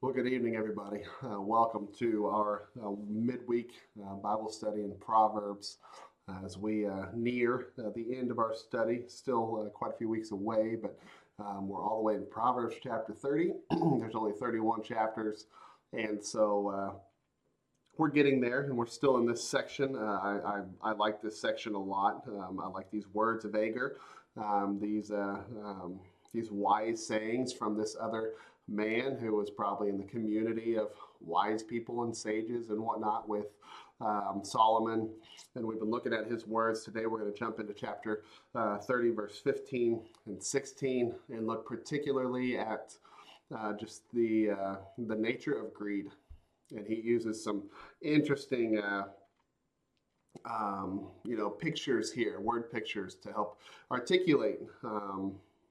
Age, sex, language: 30-49, male, English